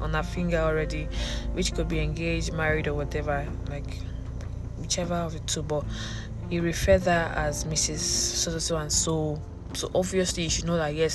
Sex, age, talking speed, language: female, 20-39, 185 wpm, English